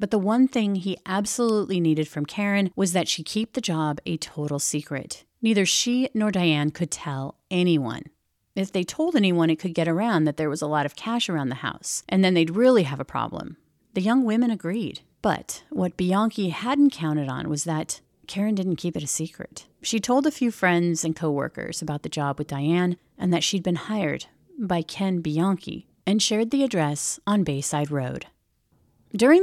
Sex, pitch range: female, 155-205 Hz